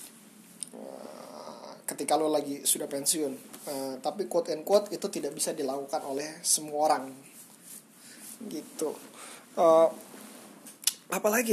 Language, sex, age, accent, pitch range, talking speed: Indonesian, male, 20-39, native, 160-225 Hz, 105 wpm